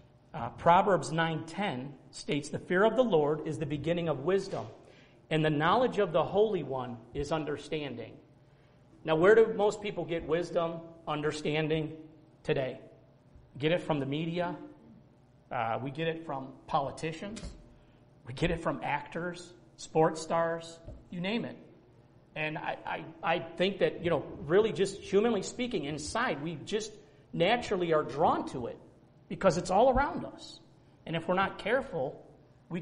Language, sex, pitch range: English, male, 145-190 Hz